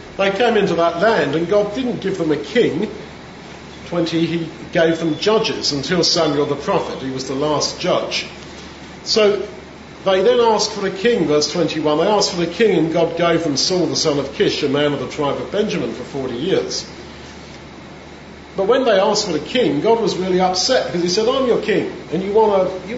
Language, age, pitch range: English, 50-69, 155-190 Hz